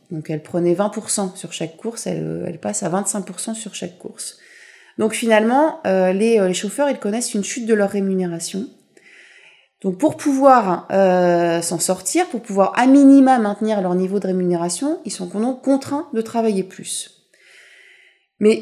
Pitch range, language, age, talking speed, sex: 180-235 Hz, French, 30-49, 165 wpm, female